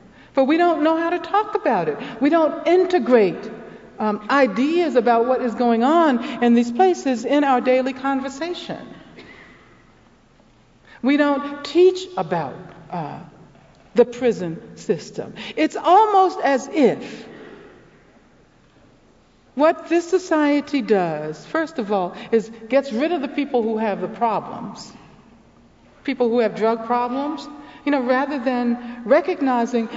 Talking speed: 130 wpm